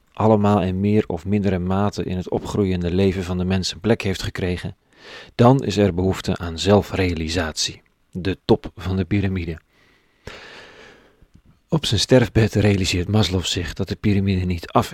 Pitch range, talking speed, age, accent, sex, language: 95-110 Hz, 155 wpm, 40-59, Dutch, male, Dutch